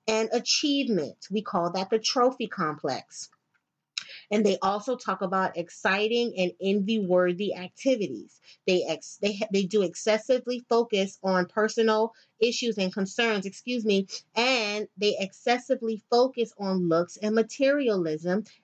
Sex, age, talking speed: female, 30-49, 130 wpm